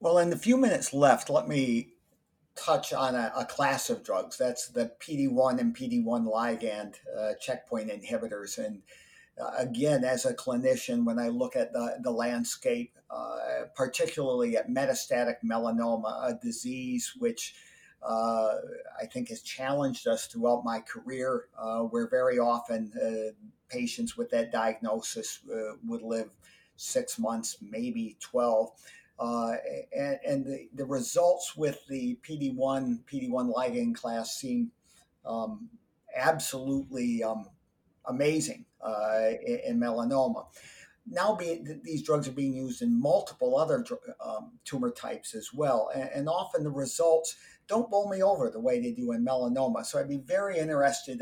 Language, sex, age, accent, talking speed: English, male, 50-69, American, 145 wpm